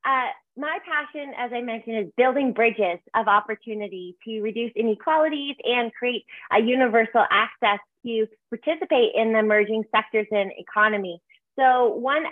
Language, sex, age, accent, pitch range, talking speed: English, female, 30-49, American, 215-275 Hz, 140 wpm